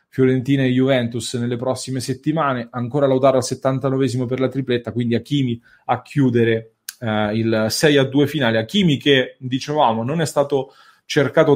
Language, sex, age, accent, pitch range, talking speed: English, male, 30-49, Italian, 120-145 Hz, 140 wpm